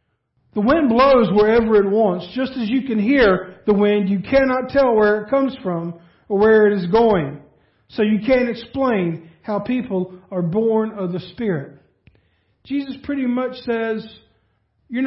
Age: 50-69